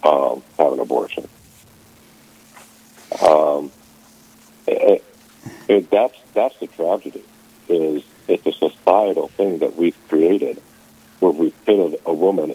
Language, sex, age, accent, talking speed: English, male, 60-79, American, 115 wpm